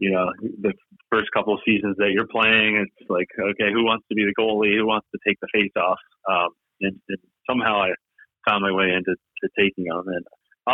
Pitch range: 95-105 Hz